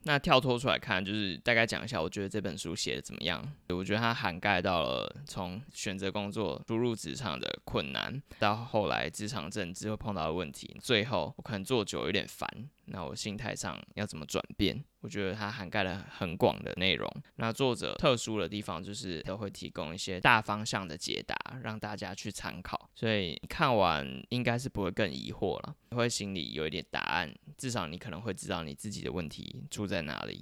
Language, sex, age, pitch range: Chinese, male, 20-39, 95-125 Hz